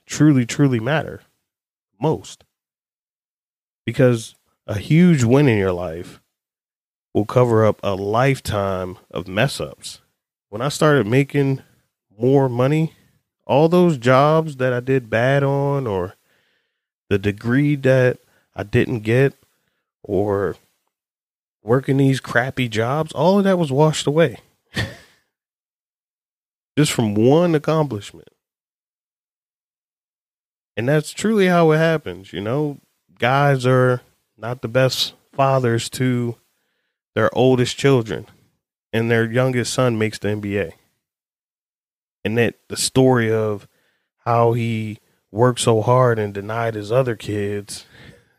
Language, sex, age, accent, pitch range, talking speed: English, male, 30-49, American, 110-140 Hz, 120 wpm